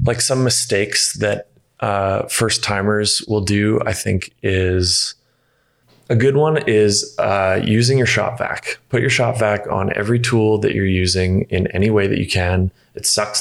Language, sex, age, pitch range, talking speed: English, male, 20-39, 95-115 Hz, 175 wpm